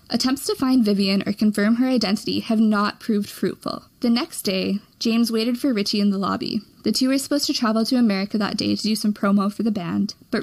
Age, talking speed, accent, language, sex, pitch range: 20-39, 230 wpm, American, English, female, 205-245 Hz